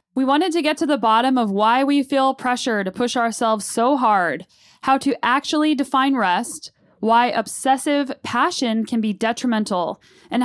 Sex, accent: female, American